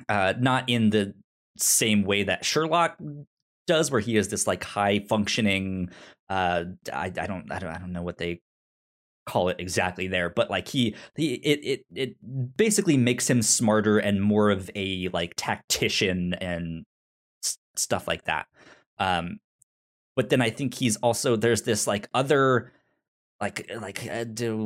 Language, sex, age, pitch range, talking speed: English, male, 20-39, 95-135 Hz, 160 wpm